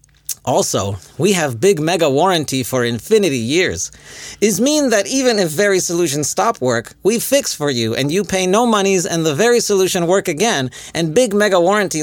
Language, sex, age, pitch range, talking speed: English, male, 40-59, 130-185 Hz, 185 wpm